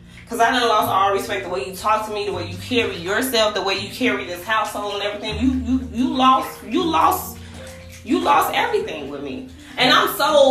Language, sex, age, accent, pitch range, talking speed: English, female, 20-39, American, 190-245 Hz, 225 wpm